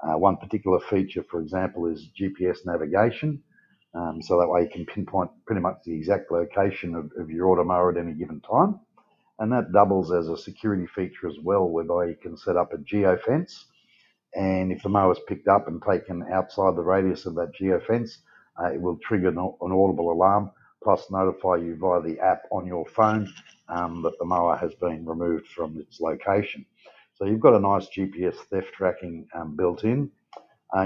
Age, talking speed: 50-69, 195 wpm